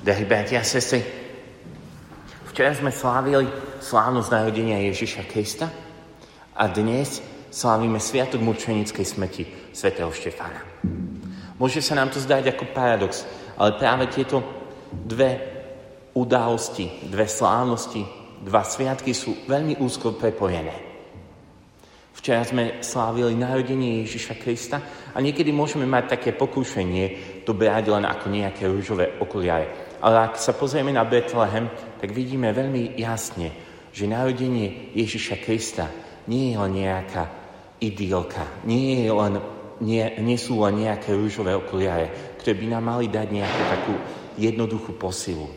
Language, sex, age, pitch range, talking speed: Slovak, male, 30-49, 105-130 Hz, 125 wpm